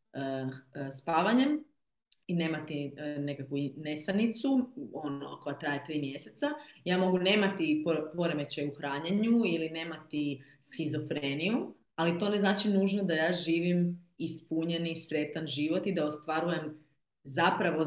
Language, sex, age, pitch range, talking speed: Croatian, female, 30-49, 145-180 Hz, 115 wpm